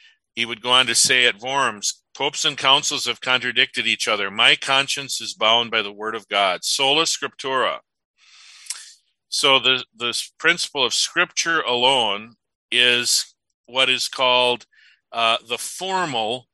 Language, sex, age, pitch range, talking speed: English, male, 50-69, 115-140 Hz, 145 wpm